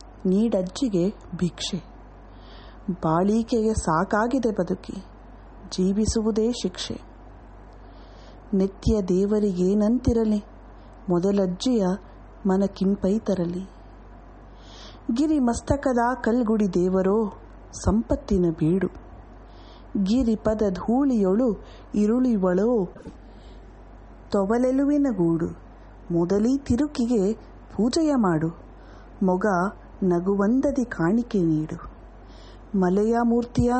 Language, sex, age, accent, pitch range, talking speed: English, female, 30-49, Indian, 180-230 Hz, 50 wpm